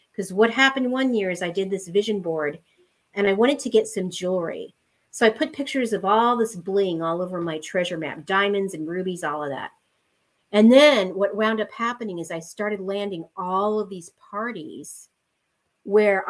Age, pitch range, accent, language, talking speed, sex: 40-59, 185-230 Hz, American, English, 190 wpm, female